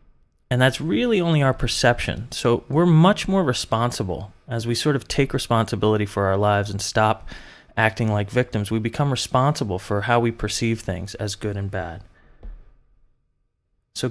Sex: male